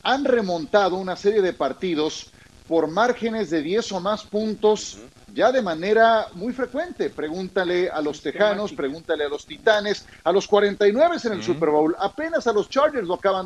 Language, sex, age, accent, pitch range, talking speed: Spanish, male, 40-59, Mexican, 170-225 Hz, 175 wpm